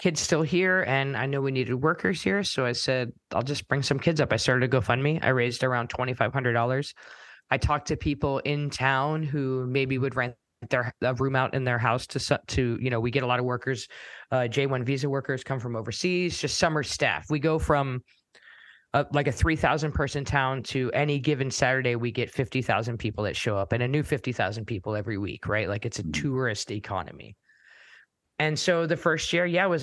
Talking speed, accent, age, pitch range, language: 205 wpm, American, 20-39, 120-140 Hz, English